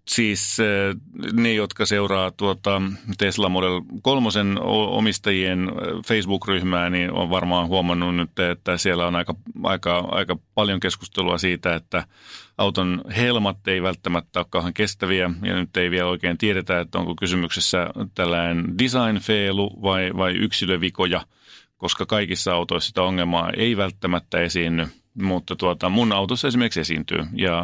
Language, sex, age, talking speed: Finnish, male, 30-49, 125 wpm